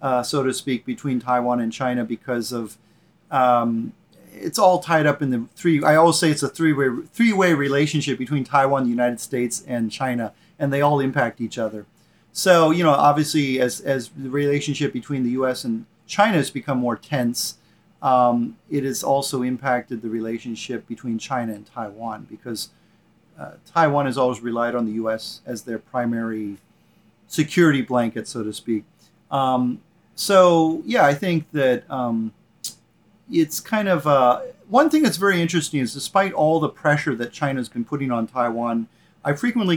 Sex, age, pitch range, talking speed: male, 40-59, 120-155 Hz, 170 wpm